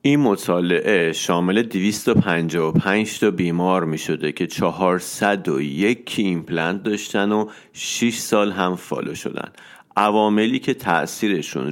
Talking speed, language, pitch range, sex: 100 wpm, Persian, 85-105 Hz, male